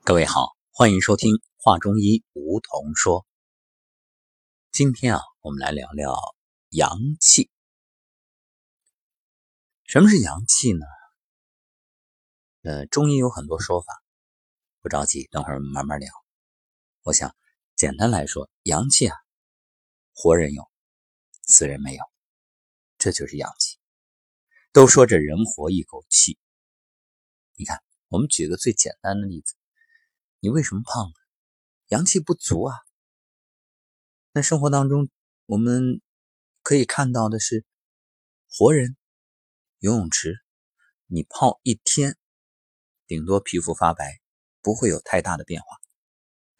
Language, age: Chinese, 50-69